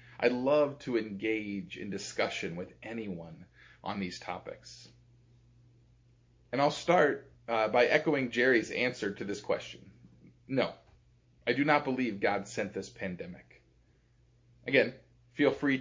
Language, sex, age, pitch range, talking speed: English, male, 30-49, 115-130 Hz, 130 wpm